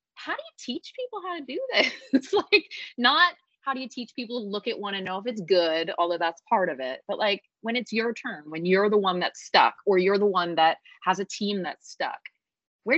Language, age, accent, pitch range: English, 20-39, American, 165-240 Hz